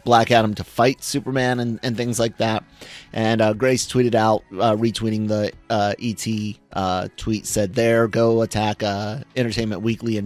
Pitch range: 105-125 Hz